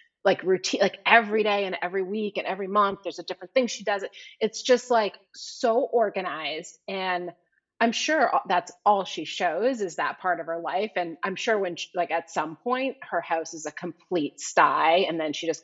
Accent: American